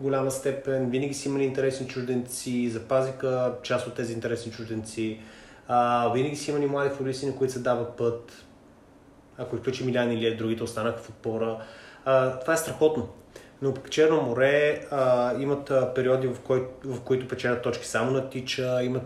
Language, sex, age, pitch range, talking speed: Bulgarian, male, 20-39, 115-135 Hz, 165 wpm